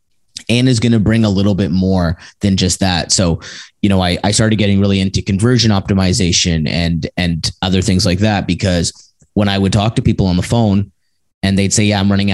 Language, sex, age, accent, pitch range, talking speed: English, male, 30-49, American, 90-105 Hz, 220 wpm